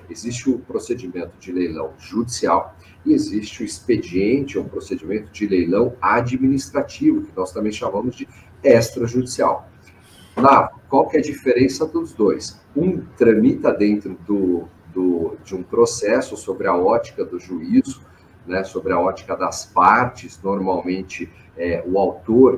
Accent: Brazilian